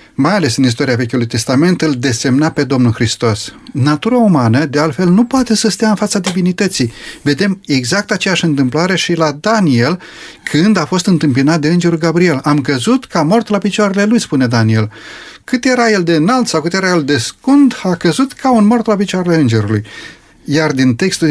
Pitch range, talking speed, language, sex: 140-195 Hz, 190 wpm, Romanian, male